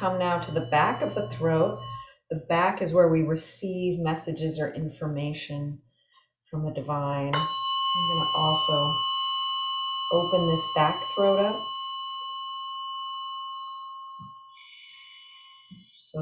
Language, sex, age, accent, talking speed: English, female, 30-49, American, 110 wpm